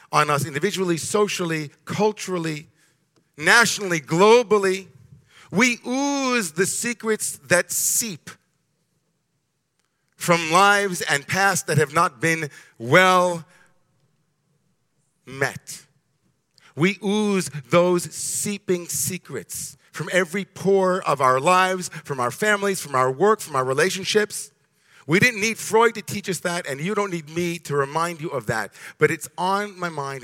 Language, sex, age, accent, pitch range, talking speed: English, male, 50-69, American, 150-190 Hz, 130 wpm